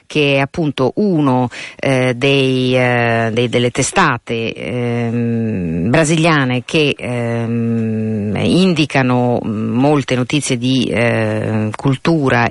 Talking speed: 85 wpm